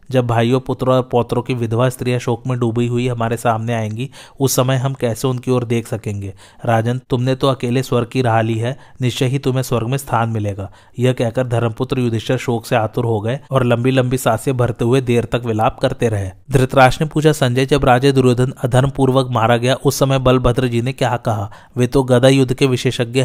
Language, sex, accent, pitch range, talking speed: Hindi, male, native, 120-130 Hz, 190 wpm